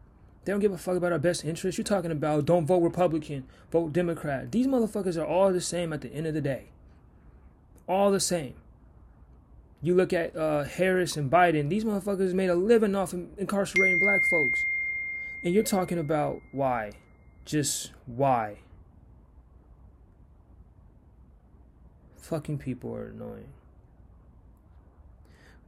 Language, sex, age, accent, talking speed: English, male, 30-49, American, 140 wpm